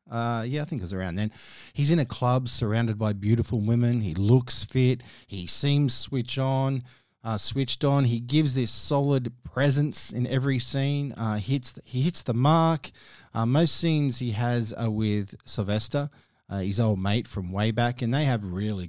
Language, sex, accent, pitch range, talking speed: English, male, Australian, 105-135 Hz, 190 wpm